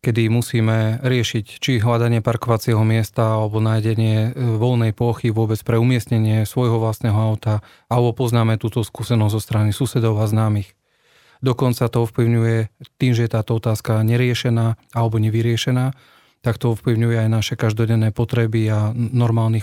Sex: male